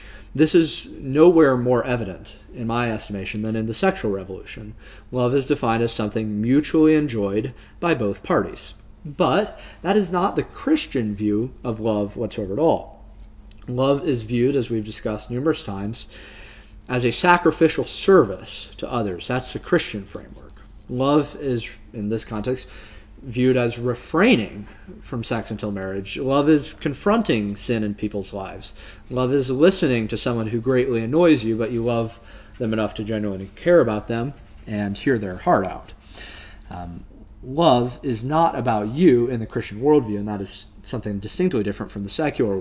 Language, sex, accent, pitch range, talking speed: English, male, American, 105-135 Hz, 160 wpm